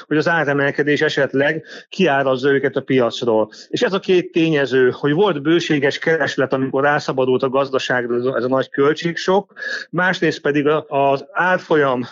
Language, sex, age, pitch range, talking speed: Hungarian, male, 40-59, 130-155 Hz, 150 wpm